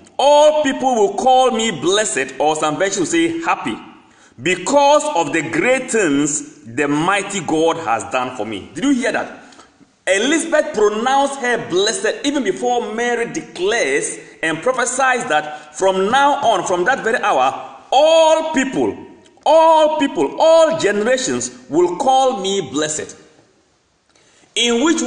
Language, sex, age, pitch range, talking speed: English, male, 40-59, 190-300 Hz, 140 wpm